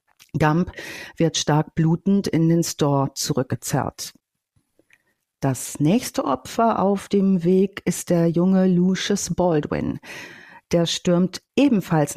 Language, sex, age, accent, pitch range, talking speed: German, female, 50-69, German, 160-195 Hz, 110 wpm